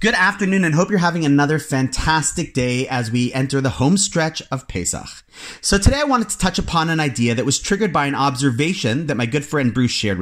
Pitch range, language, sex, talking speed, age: 115-165 Hz, English, male, 225 wpm, 30-49